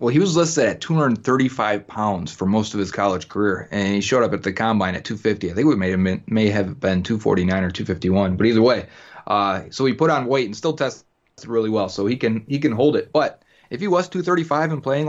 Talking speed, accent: 240 wpm, American